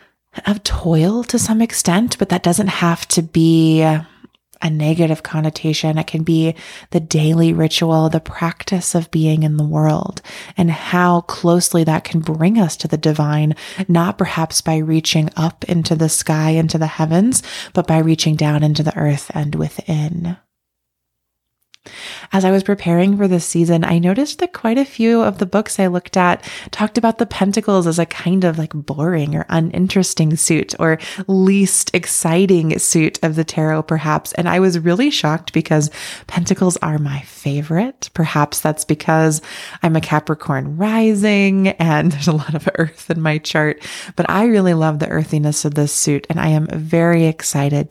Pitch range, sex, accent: 155-185 Hz, female, American